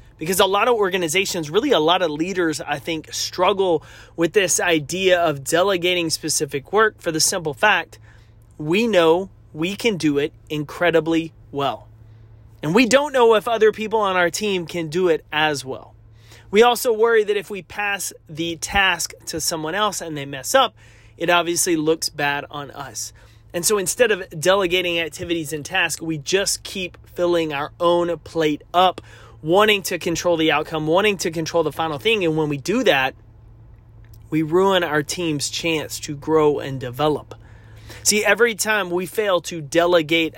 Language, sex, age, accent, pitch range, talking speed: English, male, 30-49, American, 145-195 Hz, 175 wpm